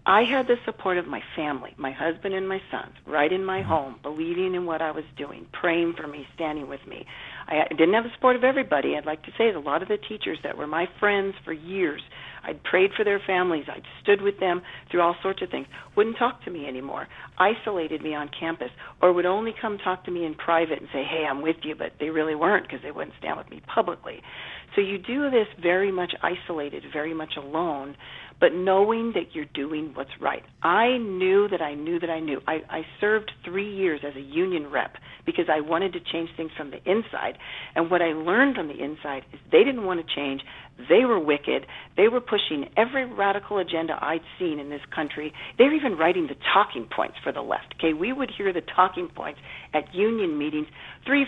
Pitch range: 155-210 Hz